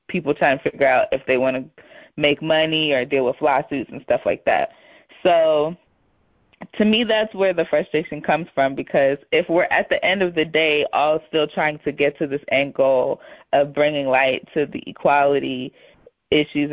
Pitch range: 145-165 Hz